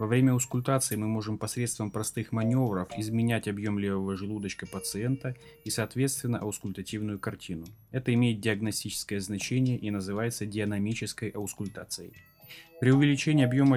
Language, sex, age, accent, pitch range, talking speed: Russian, male, 20-39, native, 105-130 Hz, 120 wpm